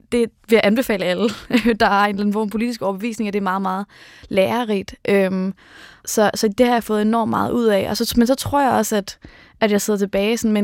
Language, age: Danish, 20-39